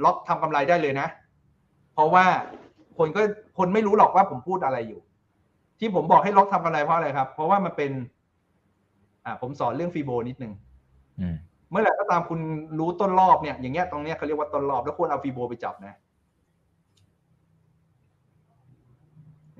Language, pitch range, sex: Thai, 125-180 Hz, male